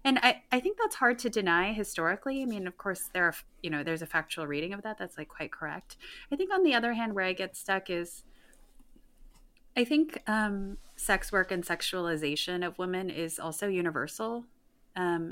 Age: 30-49